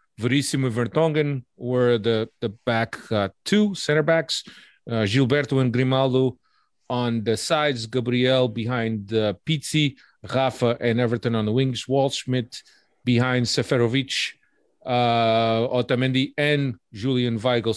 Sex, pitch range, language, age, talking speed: male, 115-150 Hz, English, 40-59, 120 wpm